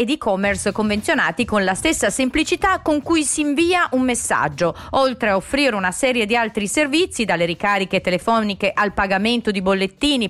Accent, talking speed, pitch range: native, 165 wpm, 195-260 Hz